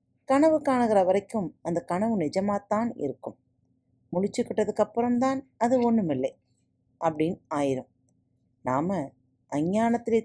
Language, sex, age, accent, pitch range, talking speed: Tamil, female, 30-49, native, 145-225 Hz, 90 wpm